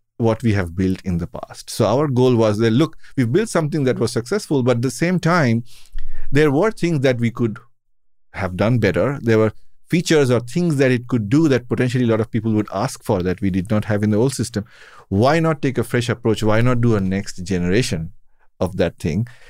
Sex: male